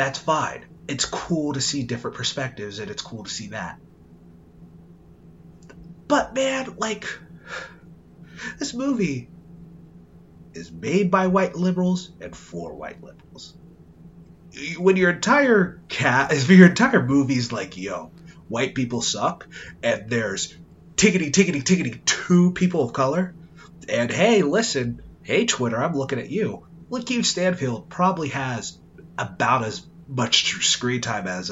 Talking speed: 120 wpm